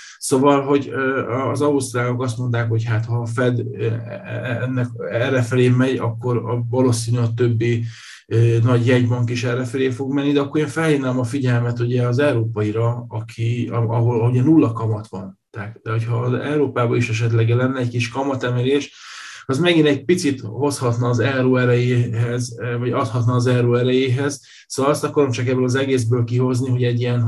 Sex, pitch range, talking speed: male, 120-130 Hz, 165 wpm